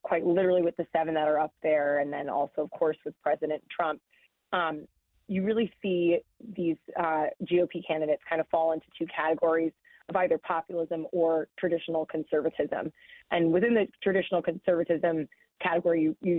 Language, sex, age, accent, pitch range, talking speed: English, female, 30-49, American, 160-180 Hz, 160 wpm